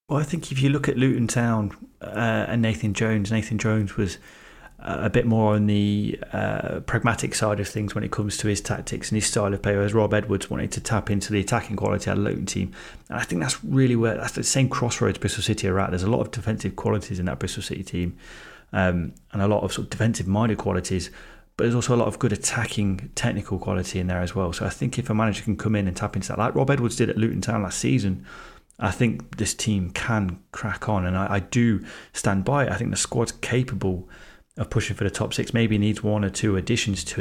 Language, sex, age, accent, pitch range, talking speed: English, male, 30-49, British, 95-115 Hz, 245 wpm